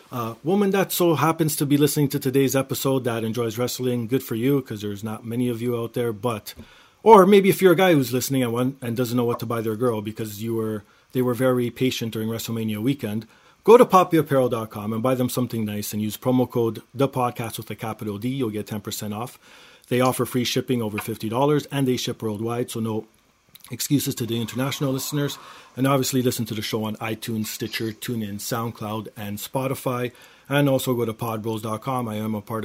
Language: English